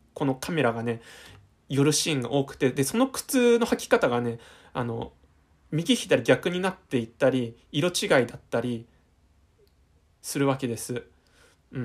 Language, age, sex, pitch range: Japanese, 20-39, male, 115-160 Hz